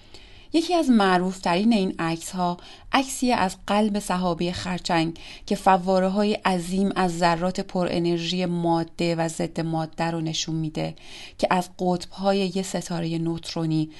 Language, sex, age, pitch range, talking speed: Persian, female, 30-49, 165-195 Hz, 135 wpm